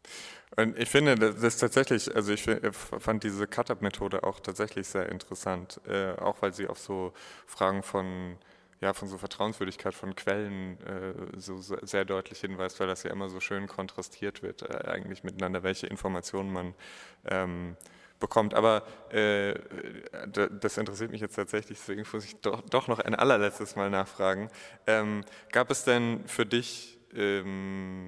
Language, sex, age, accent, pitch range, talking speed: German, male, 20-39, German, 95-110 Hz, 165 wpm